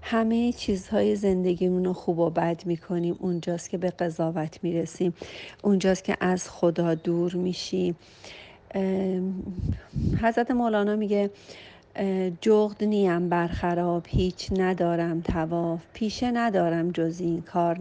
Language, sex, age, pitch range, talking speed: Persian, female, 40-59, 170-200 Hz, 110 wpm